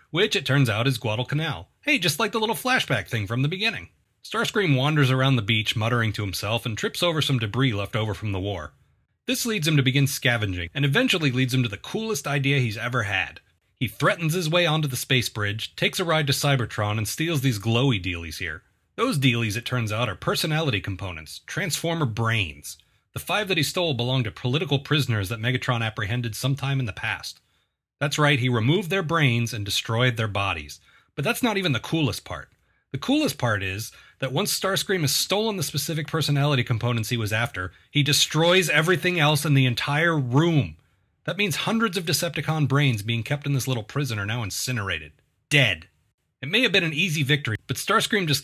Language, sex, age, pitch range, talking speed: English, male, 30-49, 110-155 Hz, 200 wpm